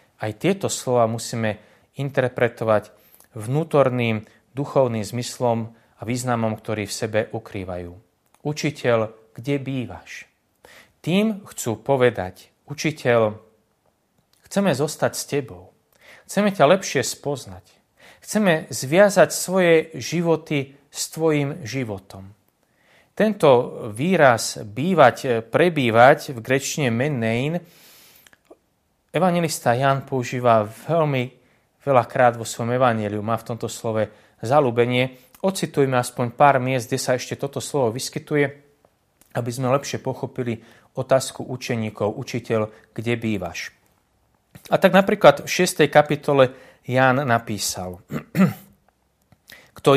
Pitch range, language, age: 110-145 Hz, Slovak, 30-49